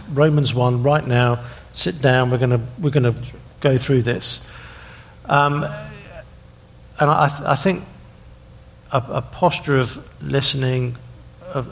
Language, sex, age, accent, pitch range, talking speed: English, male, 50-69, British, 115-130 Hz, 130 wpm